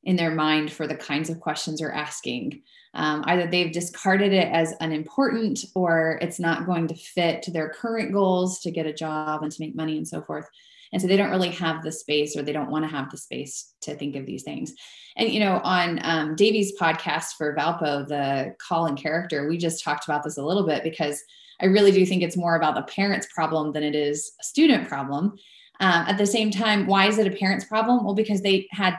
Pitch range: 165-210 Hz